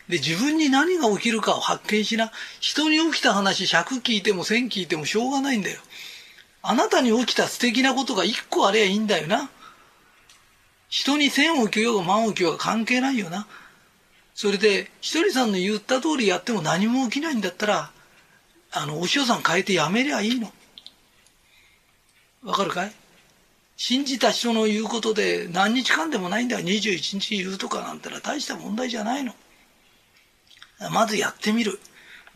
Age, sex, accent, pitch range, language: 40-59, male, native, 200-255 Hz, Japanese